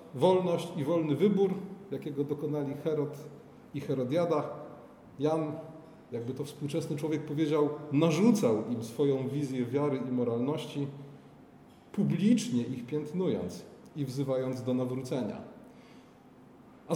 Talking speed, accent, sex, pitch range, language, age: 105 wpm, native, male, 145-185 Hz, Polish, 30-49